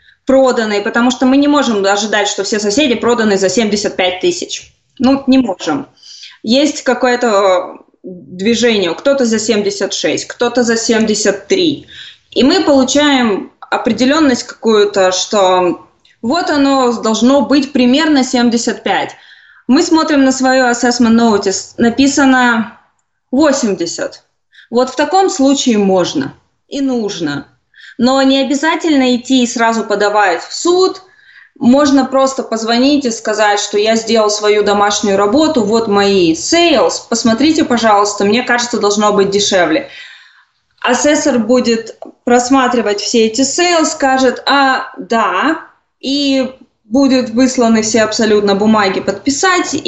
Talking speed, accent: 120 wpm, native